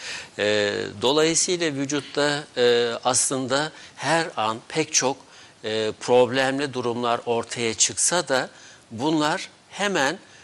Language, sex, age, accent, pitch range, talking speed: Turkish, male, 60-79, native, 115-155 Hz, 100 wpm